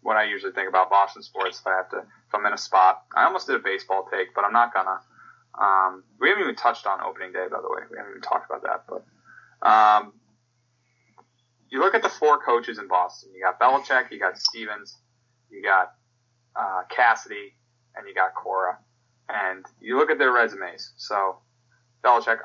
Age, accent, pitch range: 20-39, American, 105-125 Hz